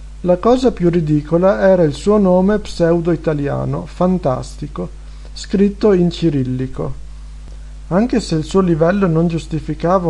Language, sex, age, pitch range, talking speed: Italian, male, 50-69, 135-175 Hz, 120 wpm